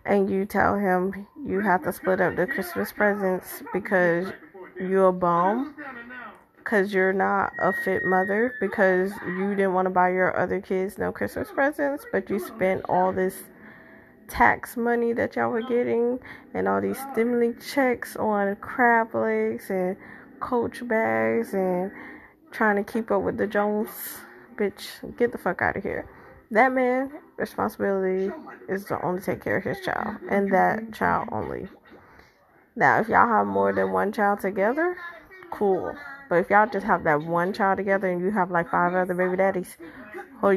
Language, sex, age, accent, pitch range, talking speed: English, female, 20-39, American, 185-240 Hz, 170 wpm